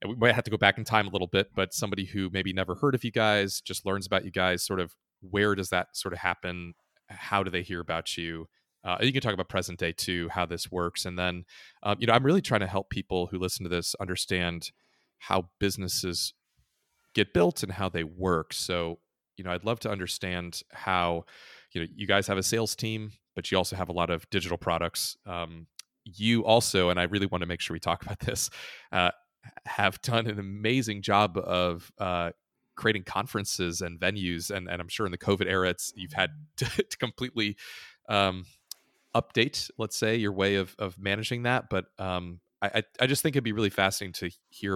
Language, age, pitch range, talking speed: English, 30-49, 90-105 Hz, 215 wpm